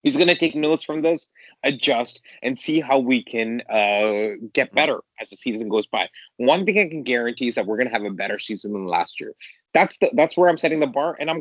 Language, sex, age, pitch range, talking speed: English, male, 20-39, 120-150 Hz, 250 wpm